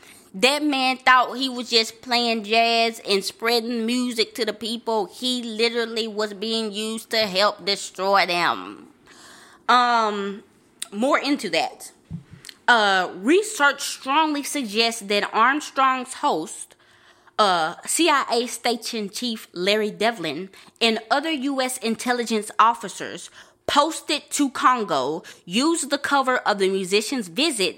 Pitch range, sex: 200-255 Hz, female